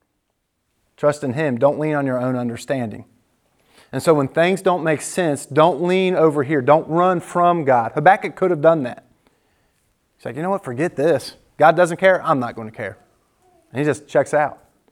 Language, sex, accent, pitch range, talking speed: English, male, American, 140-170 Hz, 195 wpm